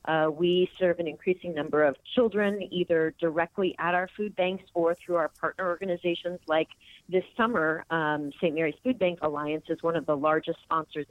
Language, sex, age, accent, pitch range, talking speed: English, female, 30-49, American, 155-180 Hz, 185 wpm